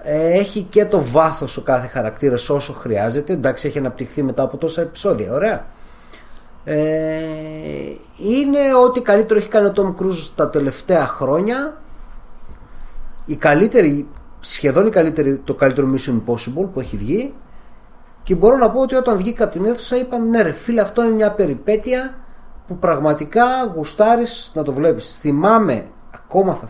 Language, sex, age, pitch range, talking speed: Greek, male, 30-49, 125-205 Hz, 155 wpm